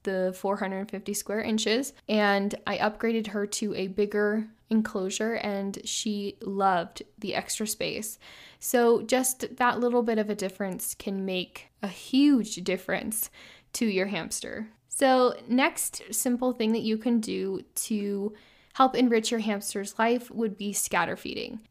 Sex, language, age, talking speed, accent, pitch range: female, English, 10-29, 145 wpm, American, 200-240 Hz